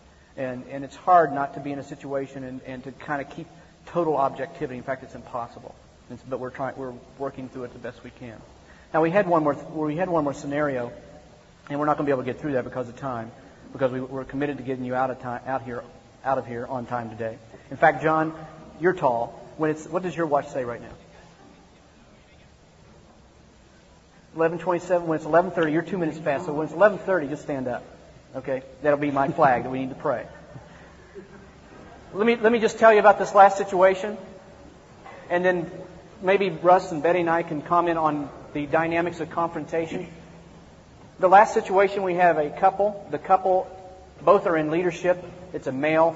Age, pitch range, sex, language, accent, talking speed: 40-59, 135-170 Hz, male, English, American, 205 wpm